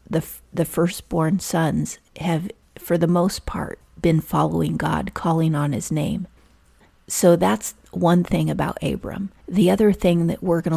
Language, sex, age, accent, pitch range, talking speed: English, female, 40-59, American, 155-180 Hz, 160 wpm